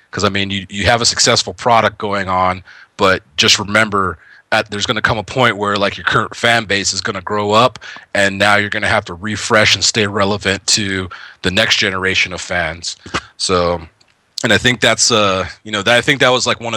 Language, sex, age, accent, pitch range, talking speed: English, male, 30-49, American, 95-115 Hz, 230 wpm